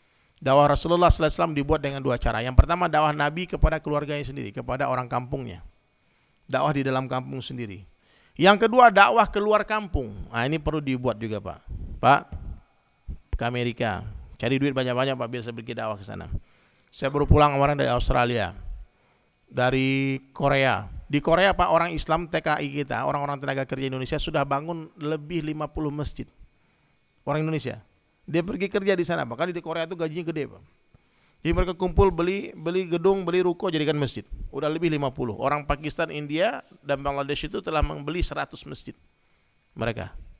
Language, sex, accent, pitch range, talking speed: Indonesian, male, native, 125-165 Hz, 160 wpm